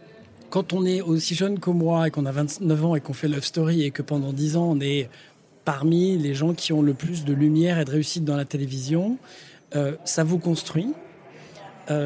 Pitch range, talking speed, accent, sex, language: 145-180 Hz, 220 wpm, French, male, French